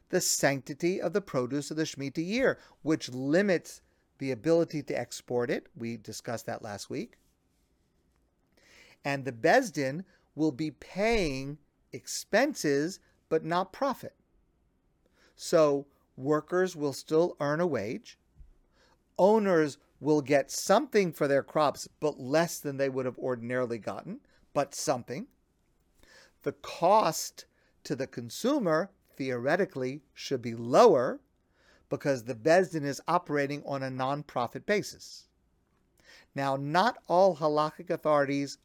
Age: 40-59